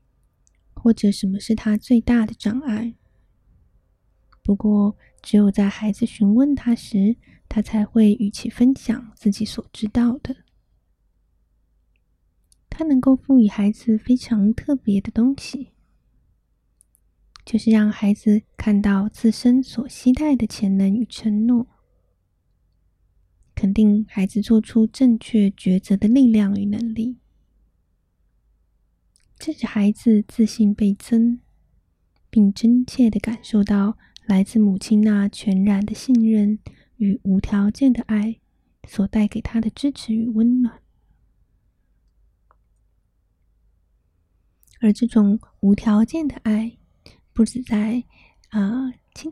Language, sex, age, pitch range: Chinese, female, 20-39, 195-230 Hz